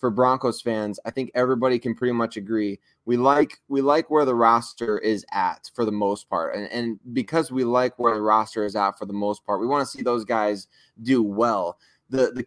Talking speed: 225 wpm